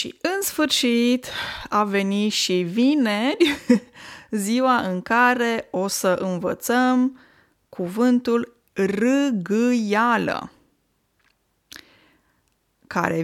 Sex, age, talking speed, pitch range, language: female, 20-39, 75 wpm, 190-255 Hz, Romanian